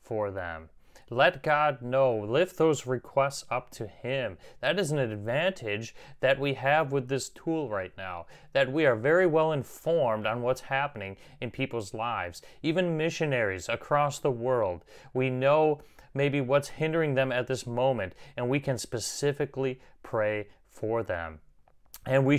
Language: English